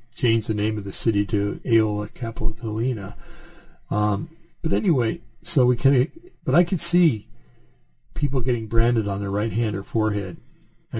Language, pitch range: English, 110-150 Hz